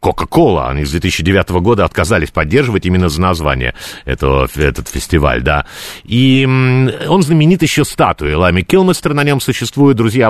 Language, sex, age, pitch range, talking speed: Russian, male, 50-69, 80-120 Hz, 145 wpm